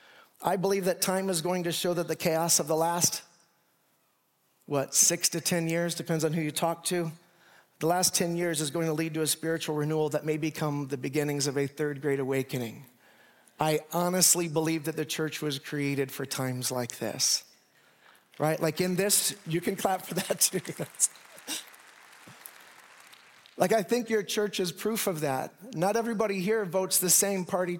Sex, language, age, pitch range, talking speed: male, English, 40-59, 160-195 Hz, 185 wpm